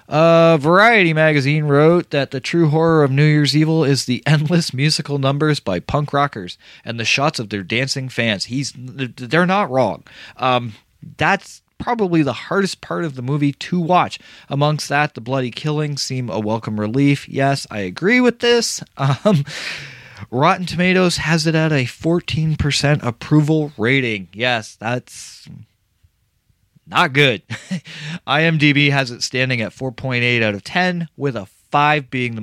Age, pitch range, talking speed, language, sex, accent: 20-39, 115-155 Hz, 155 wpm, English, male, American